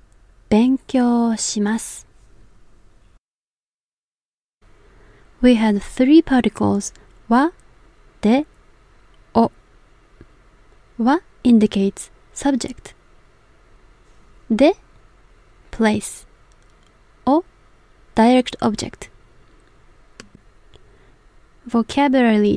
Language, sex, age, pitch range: Japanese, female, 20-39, 200-260 Hz